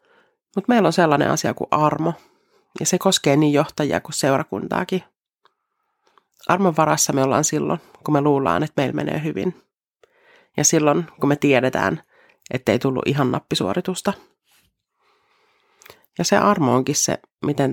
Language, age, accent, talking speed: Finnish, 30-49, native, 140 wpm